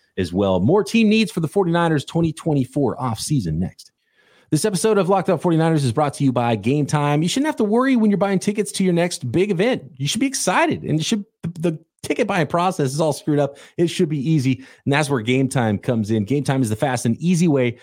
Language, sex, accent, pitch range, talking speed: English, male, American, 115-170 Hz, 245 wpm